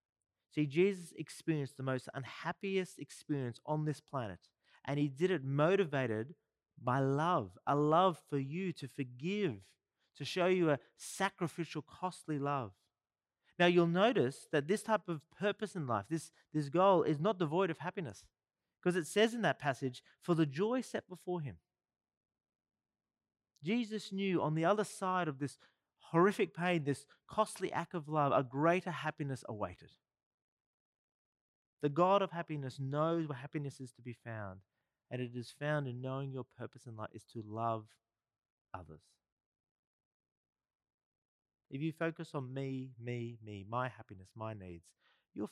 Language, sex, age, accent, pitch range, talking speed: English, male, 30-49, Australian, 110-170 Hz, 155 wpm